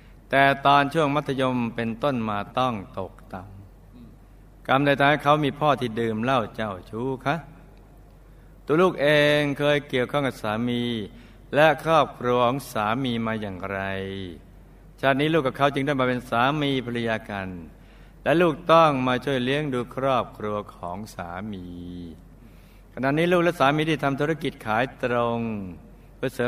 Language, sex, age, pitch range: Thai, male, 60-79, 95-140 Hz